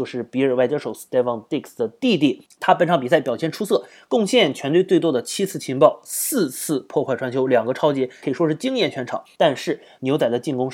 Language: Chinese